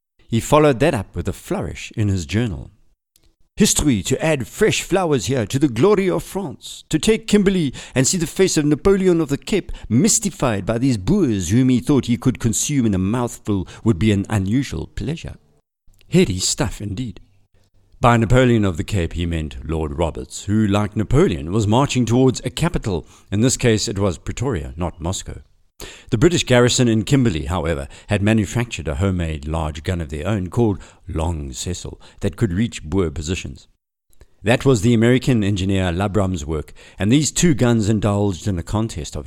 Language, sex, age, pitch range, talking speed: English, male, 50-69, 90-125 Hz, 180 wpm